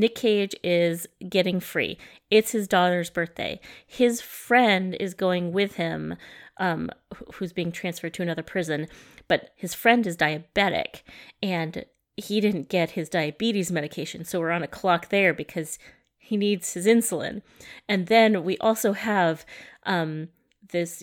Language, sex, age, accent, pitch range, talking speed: English, female, 30-49, American, 170-220 Hz, 150 wpm